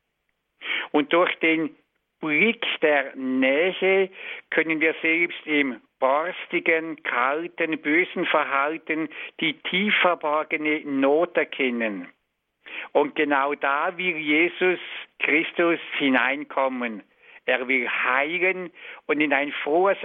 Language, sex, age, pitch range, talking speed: German, male, 60-79, 135-175 Hz, 95 wpm